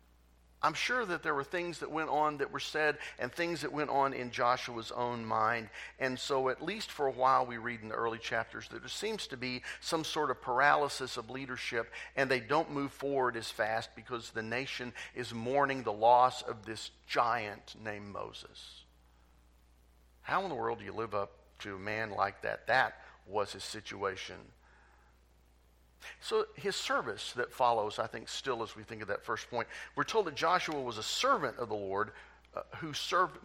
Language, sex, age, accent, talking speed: English, male, 50-69, American, 195 wpm